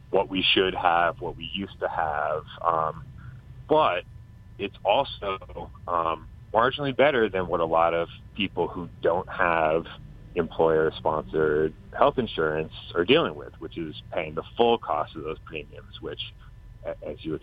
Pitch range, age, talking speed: 90-115 Hz, 30-49, 150 wpm